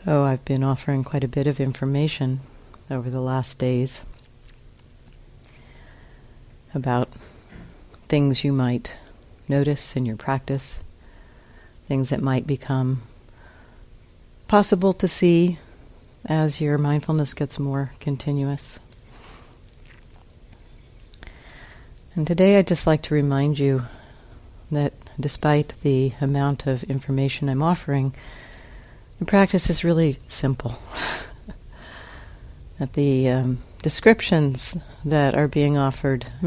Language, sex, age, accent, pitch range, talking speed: English, female, 50-69, American, 120-155 Hz, 100 wpm